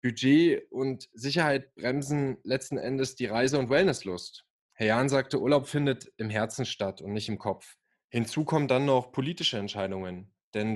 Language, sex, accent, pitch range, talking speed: German, male, German, 105-135 Hz, 160 wpm